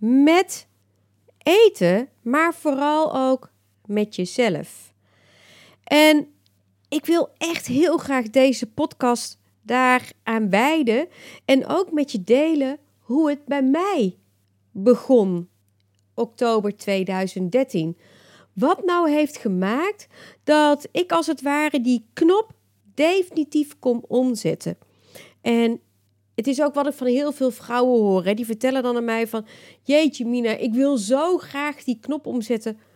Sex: female